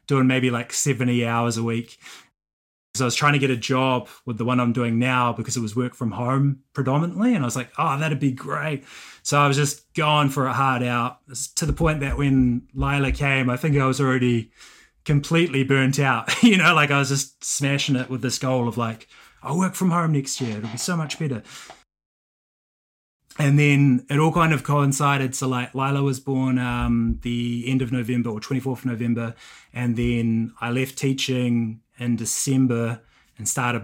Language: English